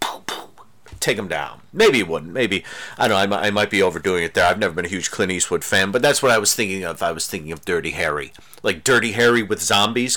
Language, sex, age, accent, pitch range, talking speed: English, male, 40-59, American, 100-135 Hz, 250 wpm